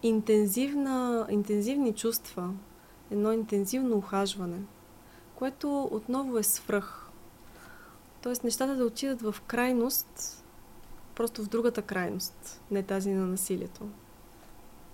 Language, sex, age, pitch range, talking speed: Bulgarian, female, 20-39, 205-255 Hz, 90 wpm